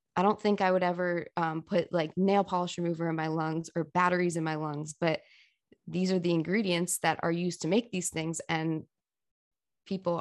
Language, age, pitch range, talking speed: English, 20-39, 165-195 Hz, 200 wpm